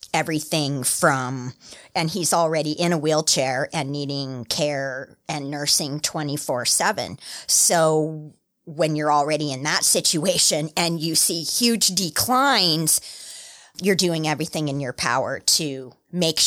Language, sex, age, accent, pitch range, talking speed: English, female, 30-49, American, 150-175 Hz, 125 wpm